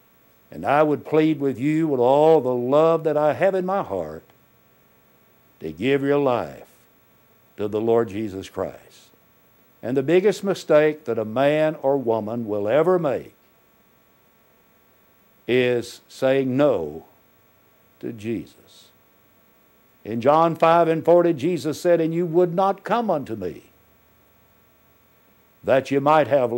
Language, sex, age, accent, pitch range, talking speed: English, male, 60-79, American, 120-160 Hz, 135 wpm